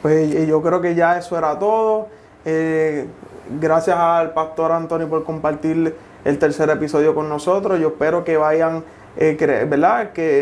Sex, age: male, 20-39